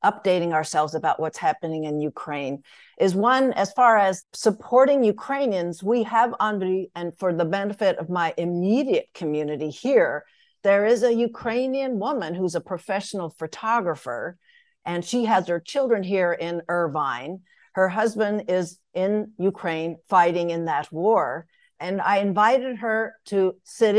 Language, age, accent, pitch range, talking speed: English, 60-79, American, 170-220 Hz, 145 wpm